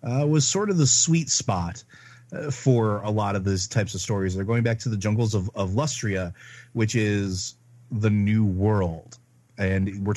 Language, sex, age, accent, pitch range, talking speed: English, male, 30-49, American, 95-120 Hz, 190 wpm